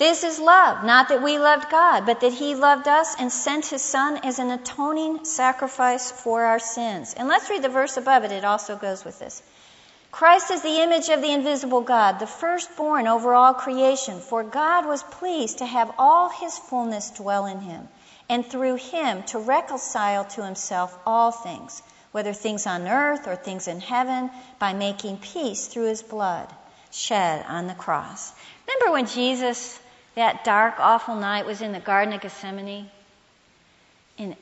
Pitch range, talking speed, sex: 205-265 Hz, 180 wpm, female